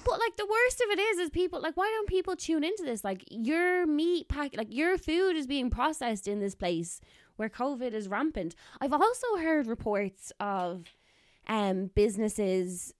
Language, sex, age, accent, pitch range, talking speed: English, female, 20-39, Irish, 175-230 Hz, 185 wpm